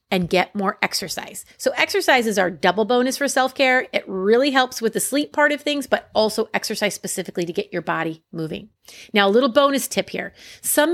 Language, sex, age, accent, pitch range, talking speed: English, female, 30-49, American, 185-255 Hz, 205 wpm